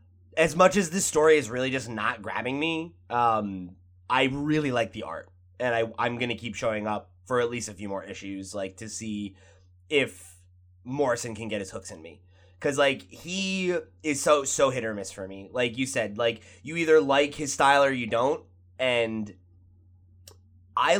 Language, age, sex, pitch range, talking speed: English, 20-39, male, 95-140 Hz, 195 wpm